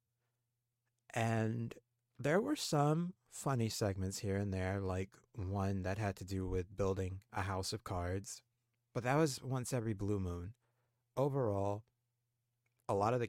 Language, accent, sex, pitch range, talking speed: English, American, male, 100-120 Hz, 150 wpm